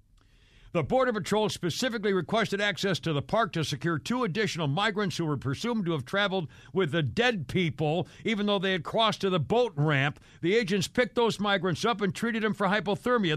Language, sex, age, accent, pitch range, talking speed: English, male, 60-79, American, 160-225 Hz, 195 wpm